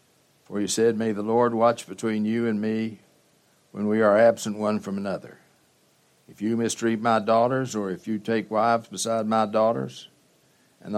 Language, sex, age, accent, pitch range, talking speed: English, male, 60-79, American, 100-115 Hz, 175 wpm